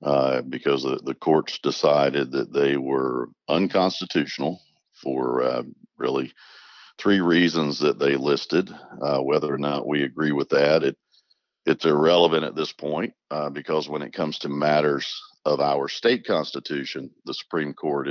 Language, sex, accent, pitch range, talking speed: English, male, American, 70-85 Hz, 150 wpm